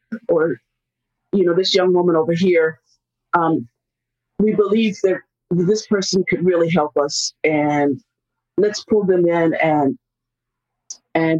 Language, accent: English, American